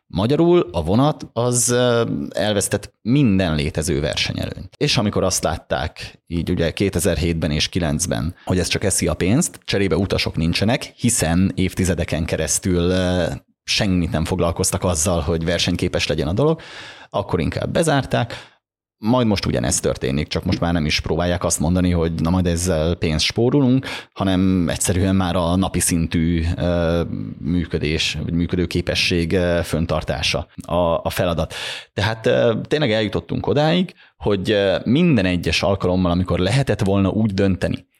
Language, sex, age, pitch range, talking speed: Hungarian, male, 30-49, 85-105 Hz, 135 wpm